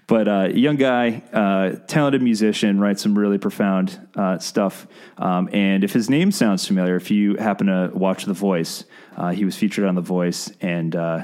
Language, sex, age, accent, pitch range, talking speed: English, male, 30-49, American, 90-125 Hz, 185 wpm